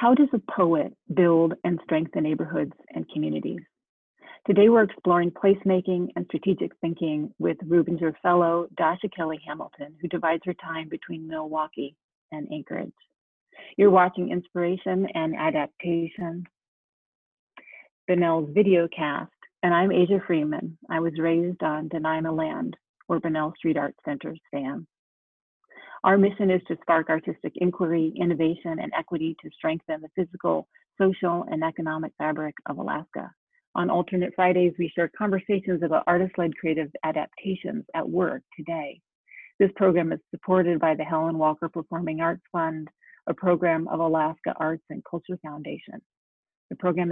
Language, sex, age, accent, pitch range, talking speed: English, female, 30-49, American, 160-185 Hz, 140 wpm